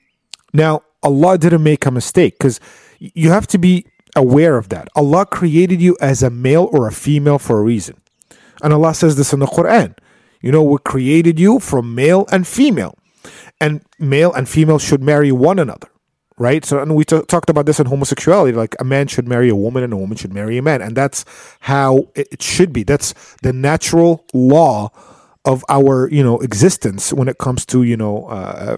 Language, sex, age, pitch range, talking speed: English, male, 40-59, 125-160 Hz, 200 wpm